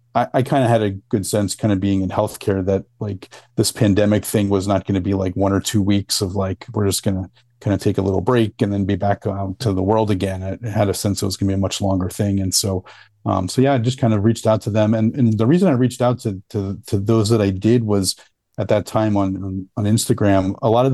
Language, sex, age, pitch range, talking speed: English, male, 40-59, 100-115 Hz, 285 wpm